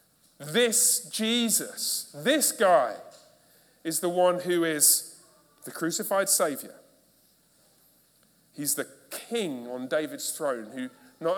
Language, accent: English, British